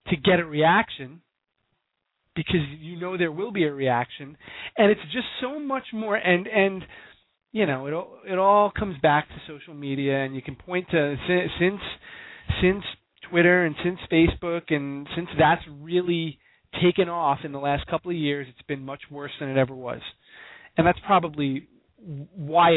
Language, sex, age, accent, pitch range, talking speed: English, male, 30-49, American, 145-190 Hz, 175 wpm